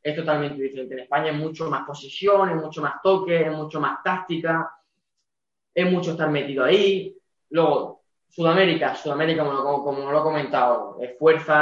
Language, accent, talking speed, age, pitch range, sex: Spanish, Spanish, 165 wpm, 10-29, 135-170 Hz, male